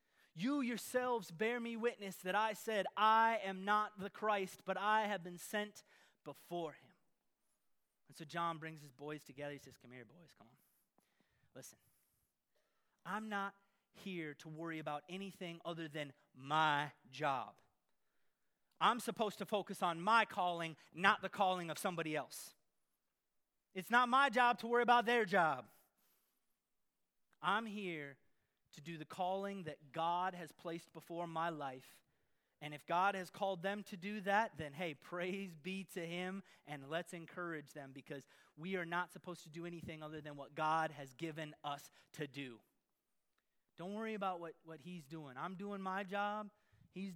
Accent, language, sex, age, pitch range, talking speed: American, English, male, 30-49, 160-205 Hz, 165 wpm